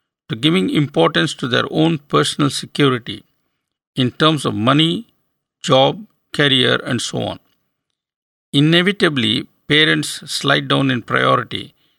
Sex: male